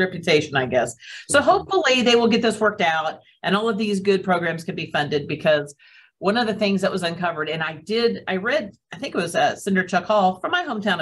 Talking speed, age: 240 wpm, 40-59